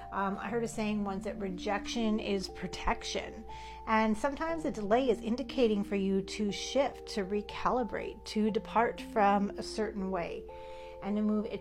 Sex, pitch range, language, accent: female, 190-235 Hz, English, American